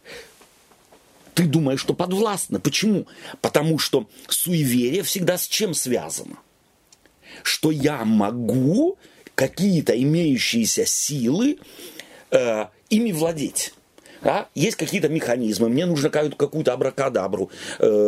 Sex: male